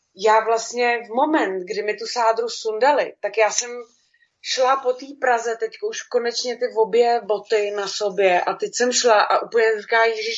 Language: Czech